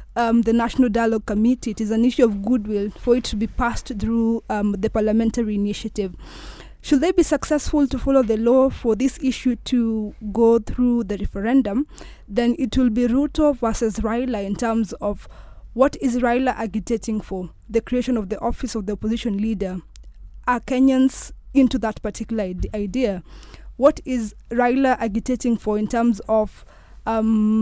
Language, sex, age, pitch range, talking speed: English, female, 20-39, 215-255 Hz, 165 wpm